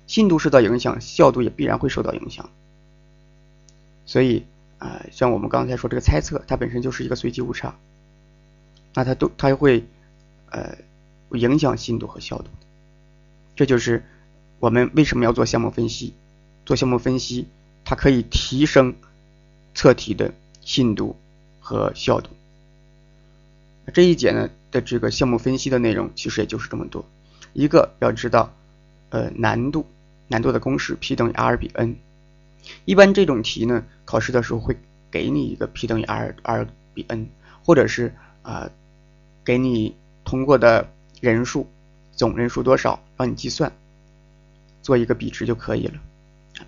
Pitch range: 120-155 Hz